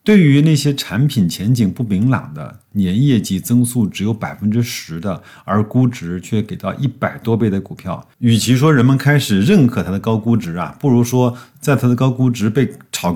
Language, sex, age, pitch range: Chinese, male, 50-69, 95-125 Hz